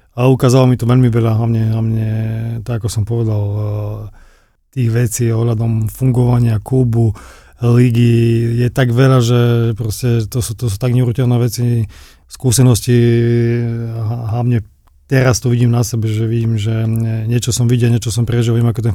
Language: Slovak